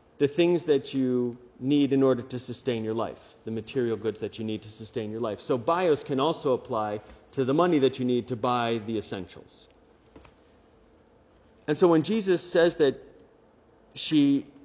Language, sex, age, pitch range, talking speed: English, male, 40-59, 115-150 Hz, 175 wpm